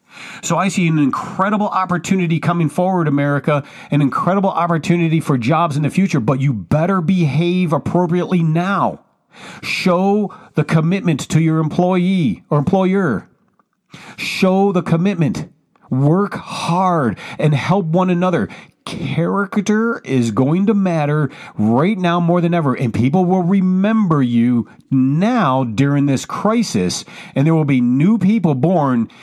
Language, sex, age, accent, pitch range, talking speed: English, male, 40-59, American, 135-185 Hz, 135 wpm